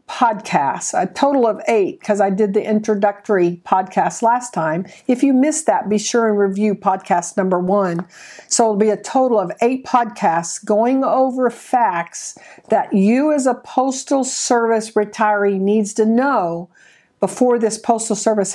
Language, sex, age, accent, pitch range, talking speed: English, female, 50-69, American, 200-250 Hz, 160 wpm